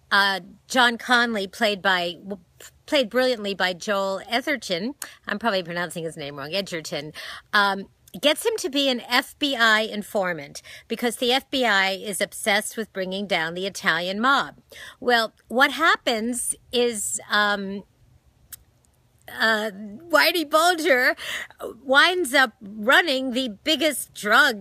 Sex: female